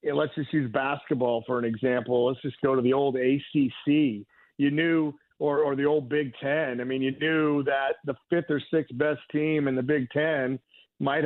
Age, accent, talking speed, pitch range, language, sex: 50-69, American, 205 wpm, 130-155 Hz, English, male